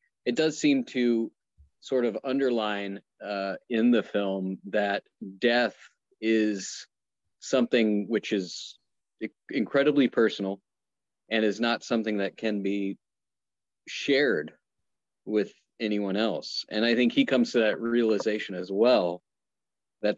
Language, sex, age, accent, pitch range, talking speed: English, male, 40-59, American, 95-115 Hz, 120 wpm